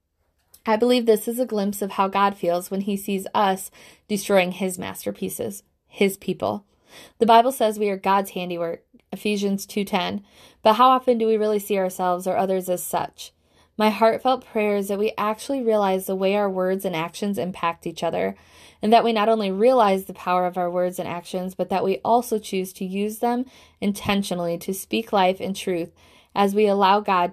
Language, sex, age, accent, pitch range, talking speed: English, female, 20-39, American, 180-220 Hz, 195 wpm